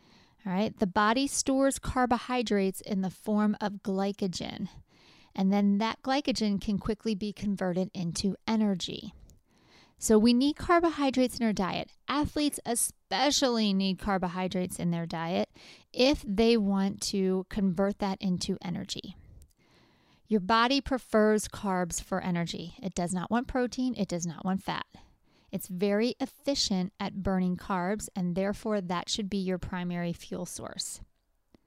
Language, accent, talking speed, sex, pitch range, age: English, American, 140 wpm, female, 190-230 Hz, 30-49